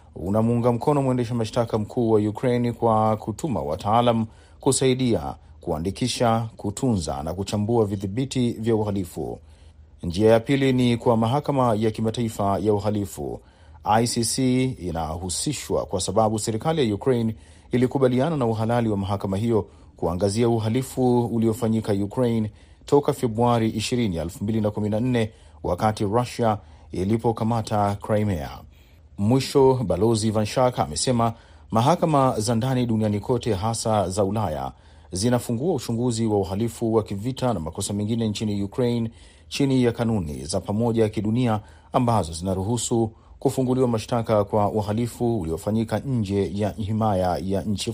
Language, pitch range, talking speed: Swahili, 100-120 Hz, 120 wpm